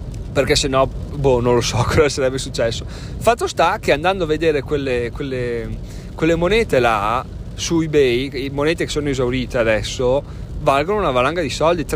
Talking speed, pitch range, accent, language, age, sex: 170 wpm, 120-140 Hz, native, Italian, 30-49, male